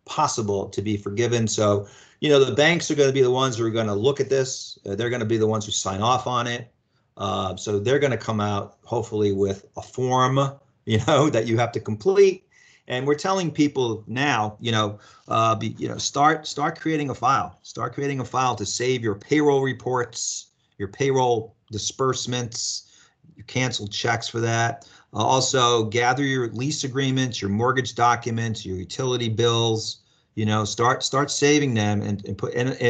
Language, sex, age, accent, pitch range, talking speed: English, male, 40-59, American, 105-130 Hz, 190 wpm